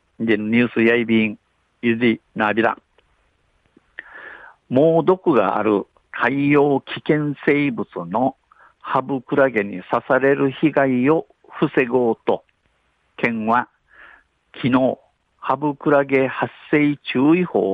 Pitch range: 115-140 Hz